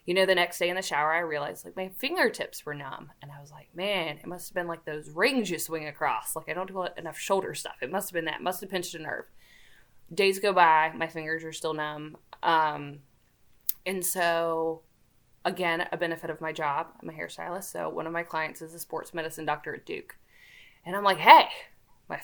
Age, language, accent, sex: 20-39, English, American, female